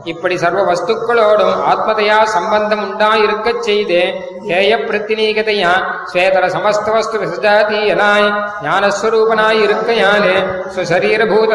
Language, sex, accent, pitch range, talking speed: Tamil, male, native, 200-220 Hz, 60 wpm